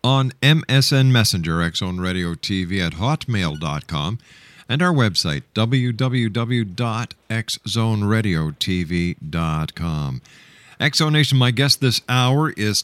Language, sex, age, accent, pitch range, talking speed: English, male, 50-69, American, 95-130 Hz, 100 wpm